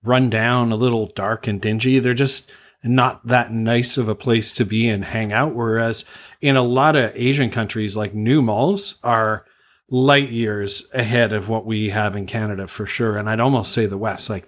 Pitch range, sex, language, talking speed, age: 110-130 Hz, male, English, 205 wpm, 40-59